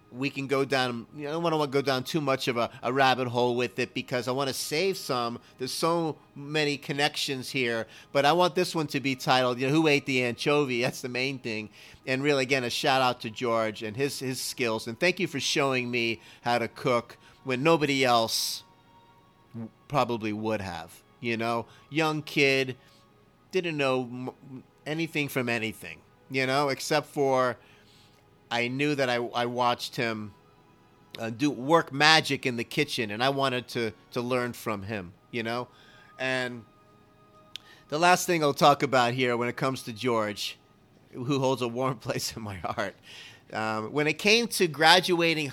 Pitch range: 115-150 Hz